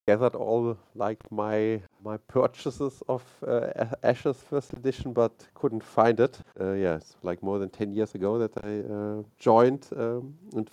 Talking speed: 170 wpm